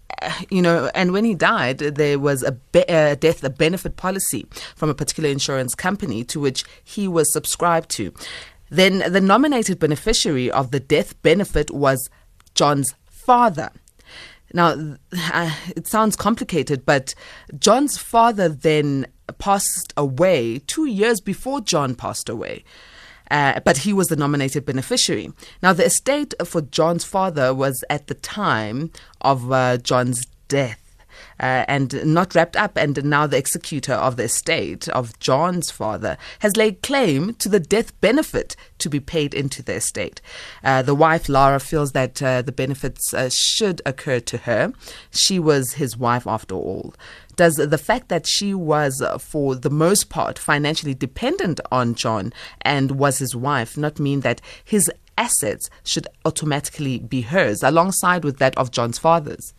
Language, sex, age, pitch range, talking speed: English, female, 20-39, 135-180 Hz, 155 wpm